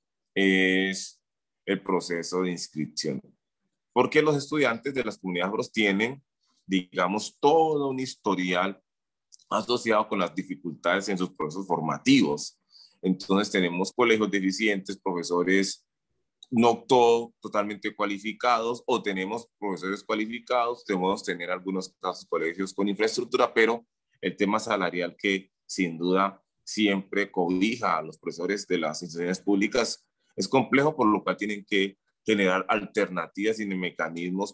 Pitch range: 95-115 Hz